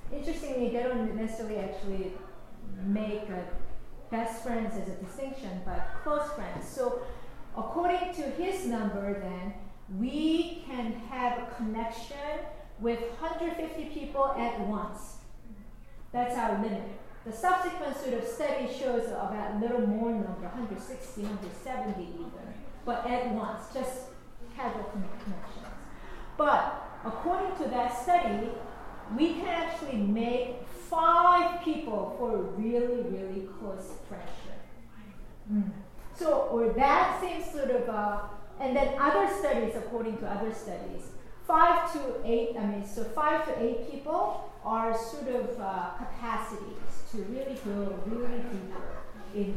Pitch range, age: 210-280 Hz, 40-59